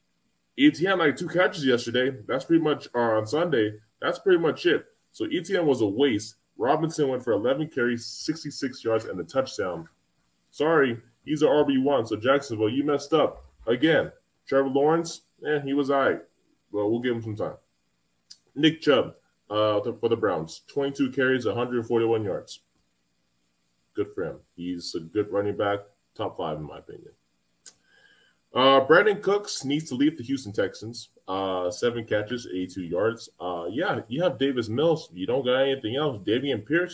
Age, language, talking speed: 10-29, English, 170 wpm